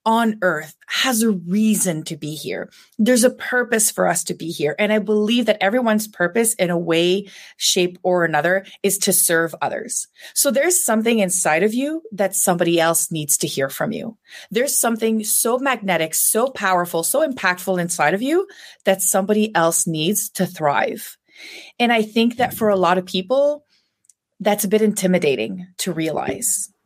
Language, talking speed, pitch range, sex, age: English, 175 wpm, 175-230 Hz, female, 30-49